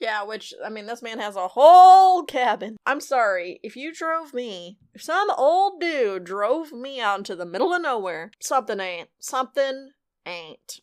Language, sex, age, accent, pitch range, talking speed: English, female, 20-39, American, 190-245 Hz, 175 wpm